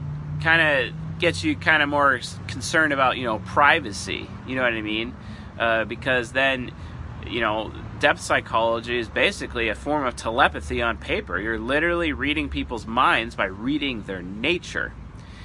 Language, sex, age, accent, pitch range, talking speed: English, male, 30-49, American, 110-140 Hz, 160 wpm